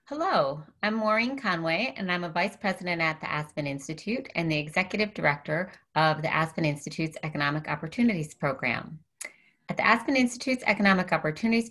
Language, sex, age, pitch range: English, female, 30-49, 155-190 Hz